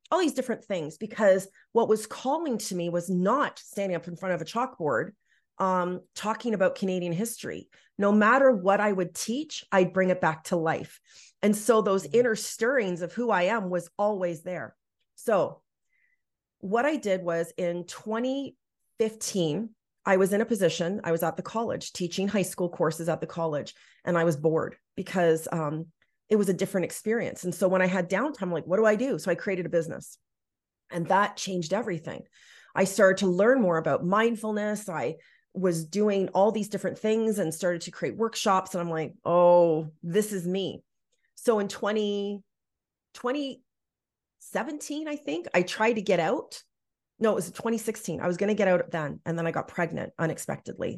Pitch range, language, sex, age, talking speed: 175-220 Hz, English, female, 30-49, 185 wpm